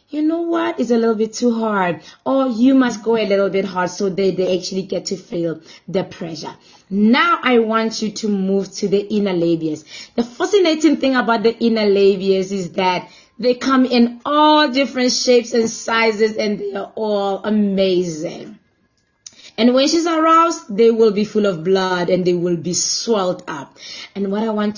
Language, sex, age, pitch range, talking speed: English, female, 20-39, 195-265 Hz, 190 wpm